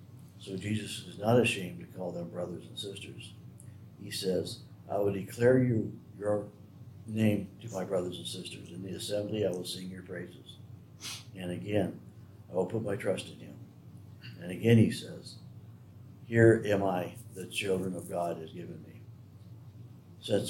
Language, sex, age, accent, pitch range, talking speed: English, male, 60-79, American, 95-115 Hz, 165 wpm